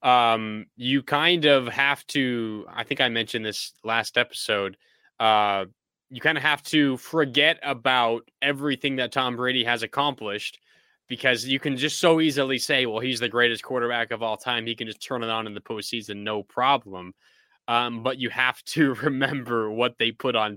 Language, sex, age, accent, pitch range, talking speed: English, male, 20-39, American, 115-135 Hz, 185 wpm